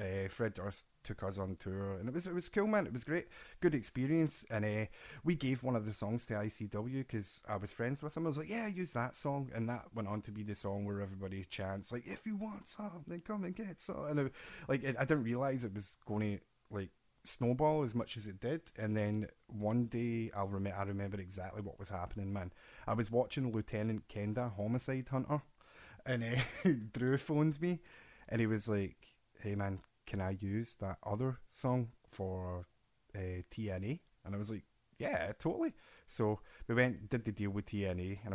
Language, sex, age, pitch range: English, male, 20-39, 100-125 Hz